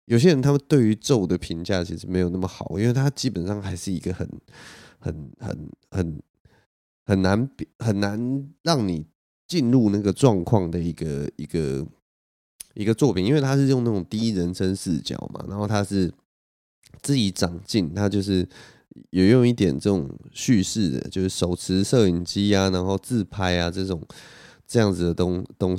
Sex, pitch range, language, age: male, 90-115 Hz, Chinese, 20-39